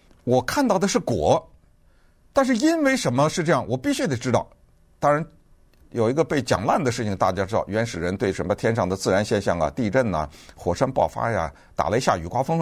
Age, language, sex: 60-79, Chinese, male